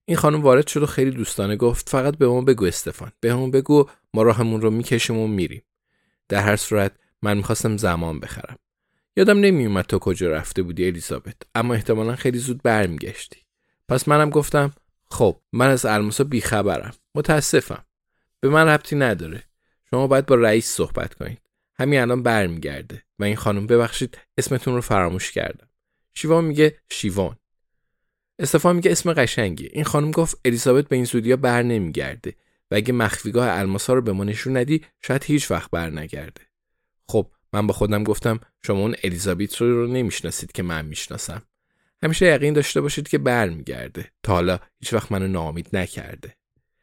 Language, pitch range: Persian, 100-135 Hz